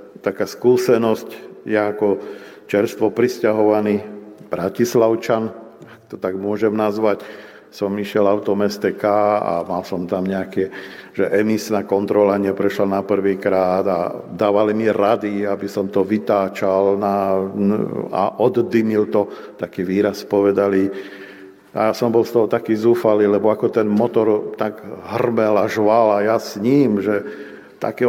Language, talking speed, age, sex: Slovak, 140 wpm, 50-69, male